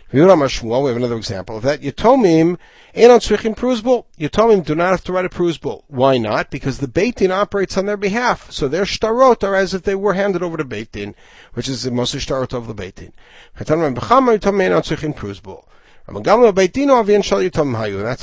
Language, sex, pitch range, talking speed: English, male, 125-200 Hz, 145 wpm